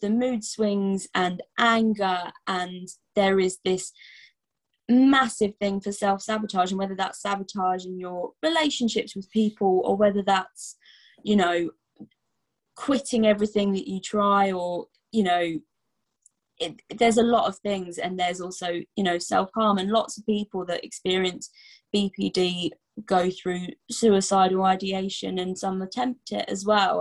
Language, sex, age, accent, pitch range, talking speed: English, female, 20-39, British, 185-215 Hz, 140 wpm